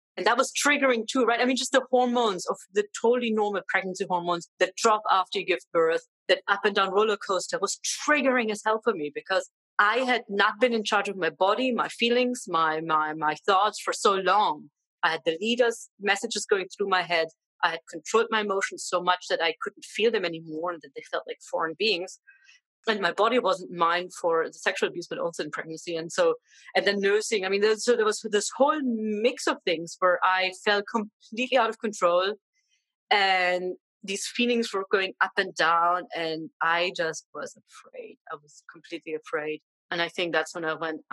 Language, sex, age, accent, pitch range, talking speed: English, female, 30-49, German, 170-245 Hz, 205 wpm